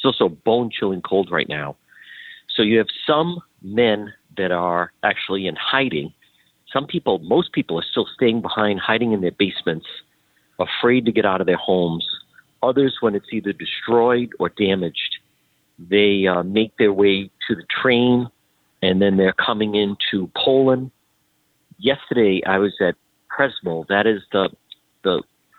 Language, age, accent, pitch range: English, 50-69, American, 95-120 Hz